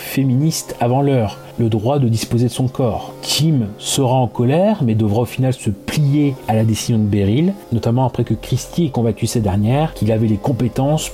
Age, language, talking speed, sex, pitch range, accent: 40-59, French, 200 wpm, male, 110-135 Hz, French